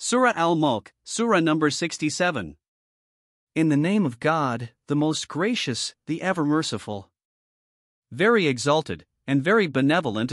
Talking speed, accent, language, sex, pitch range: 120 wpm, American, English, male, 135-175 Hz